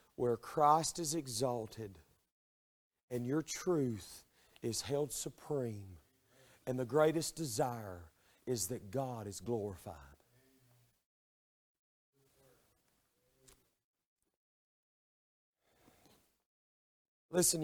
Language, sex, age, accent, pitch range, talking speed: English, male, 40-59, American, 115-185 Hz, 70 wpm